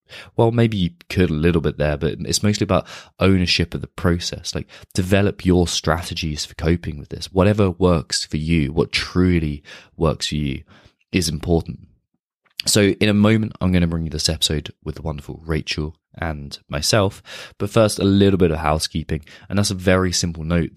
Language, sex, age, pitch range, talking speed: English, male, 20-39, 75-95 Hz, 190 wpm